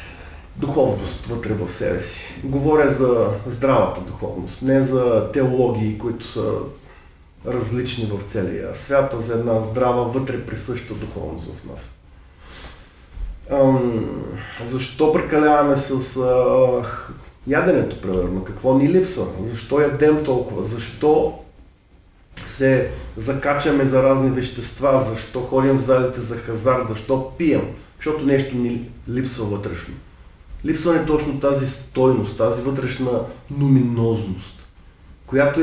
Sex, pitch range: male, 115-145 Hz